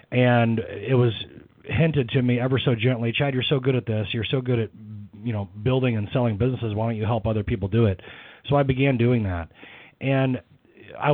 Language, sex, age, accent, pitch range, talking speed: English, male, 30-49, American, 110-130 Hz, 215 wpm